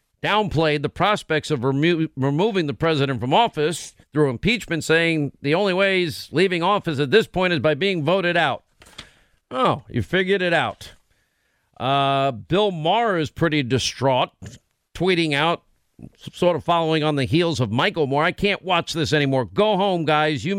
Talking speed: 165 wpm